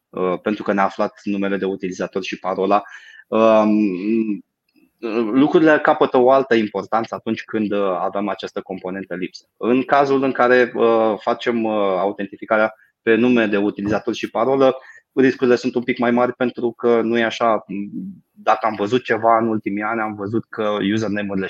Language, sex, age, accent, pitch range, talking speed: Romanian, male, 20-39, native, 100-120 Hz, 150 wpm